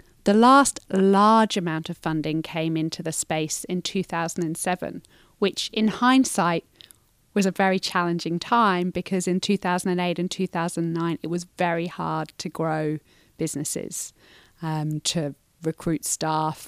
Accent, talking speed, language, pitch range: British, 130 wpm, English, 165-185 Hz